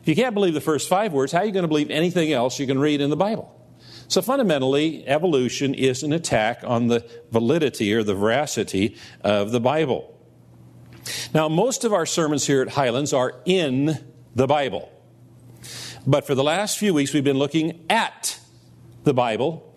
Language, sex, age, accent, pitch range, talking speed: English, male, 50-69, American, 120-160 Hz, 180 wpm